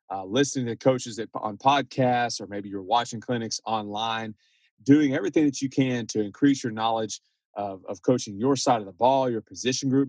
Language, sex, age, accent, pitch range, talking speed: English, male, 30-49, American, 110-135 Hz, 190 wpm